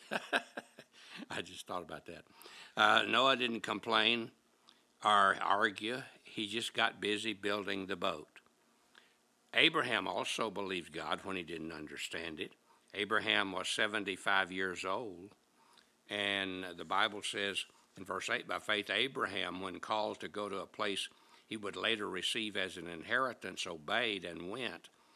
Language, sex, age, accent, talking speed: English, male, 60-79, American, 140 wpm